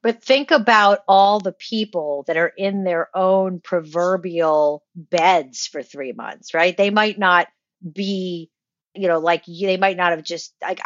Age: 40-59